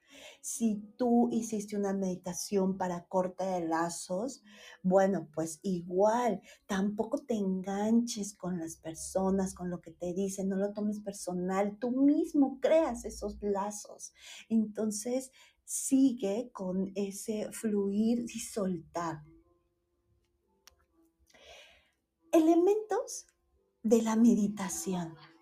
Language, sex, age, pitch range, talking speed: Spanish, female, 40-59, 190-245 Hz, 100 wpm